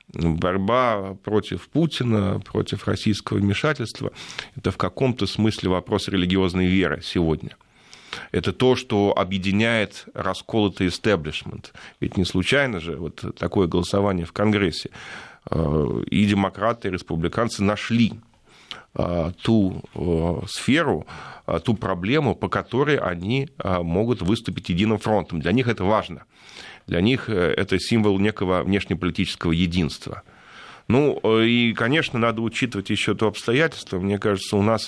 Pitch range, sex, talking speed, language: 95-115 Hz, male, 120 wpm, Russian